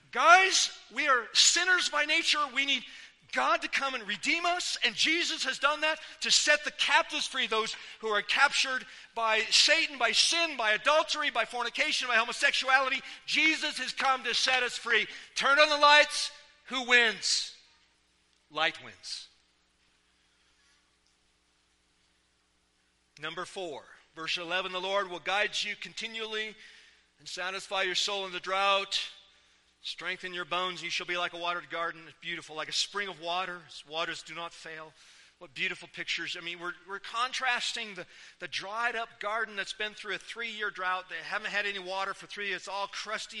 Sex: male